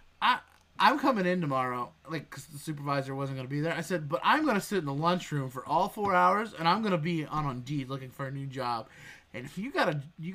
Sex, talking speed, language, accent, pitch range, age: male, 255 wpm, English, American, 150-195 Hz, 20-39